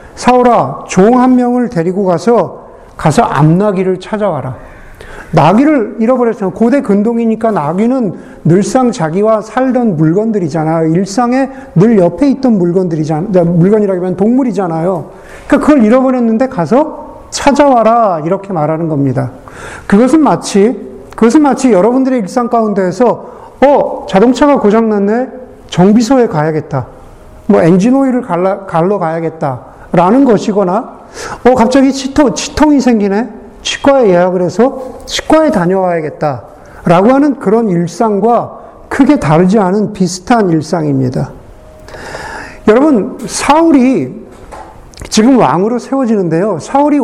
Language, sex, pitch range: Korean, male, 180-255 Hz